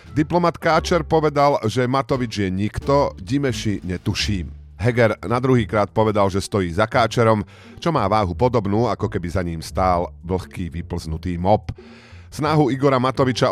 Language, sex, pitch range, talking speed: Slovak, male, 90-125 Hz, 145 wpm